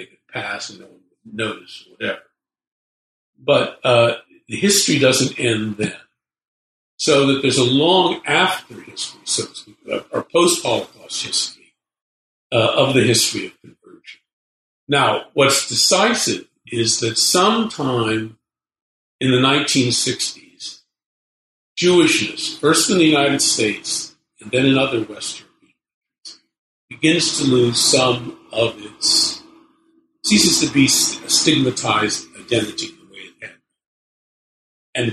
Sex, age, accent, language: male, 50-69, American, English